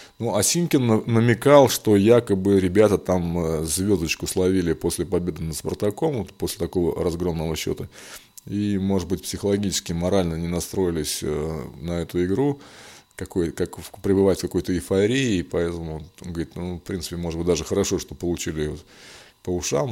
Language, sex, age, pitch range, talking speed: Russian, male, 20-39, 85-105 Hz, 150 wpm